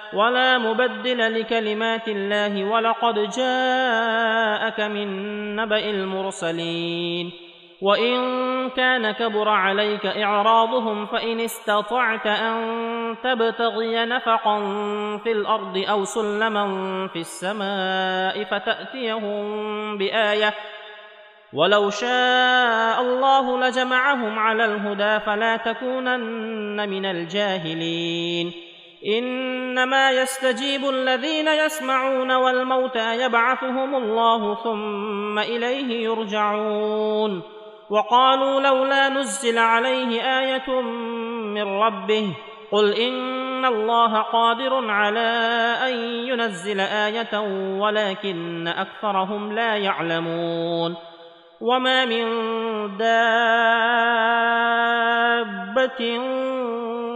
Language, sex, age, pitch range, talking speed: Arabic, male, 30-49, 210-245 Hz, 70 wpm